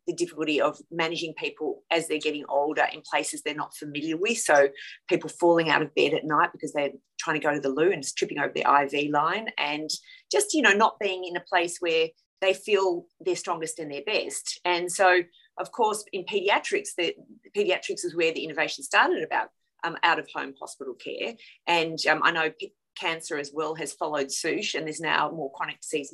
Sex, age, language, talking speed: female, 30-49, English, 210 wpm